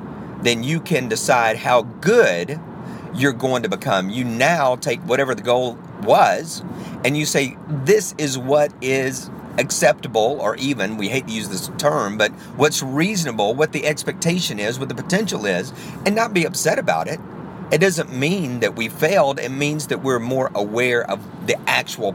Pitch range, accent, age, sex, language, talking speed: 110-145 Hz, American, 40-59, male, English, 175 wpm